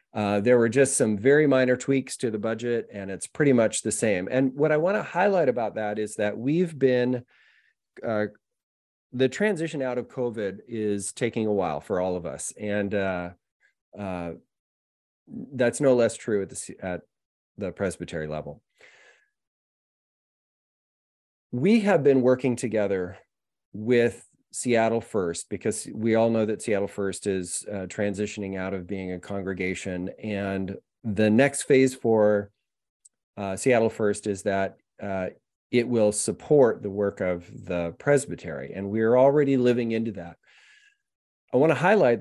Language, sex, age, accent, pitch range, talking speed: English, male, 30-49, American, 100-125 Hz, 150 wpm